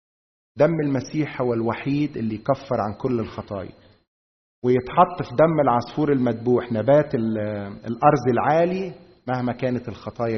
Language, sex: Arabic, male